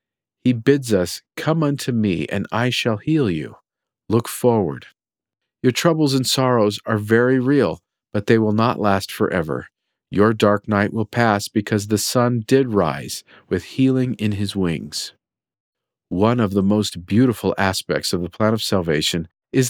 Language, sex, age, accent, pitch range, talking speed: English, male, 50-69, American, 95-130 Hz, 160 wpm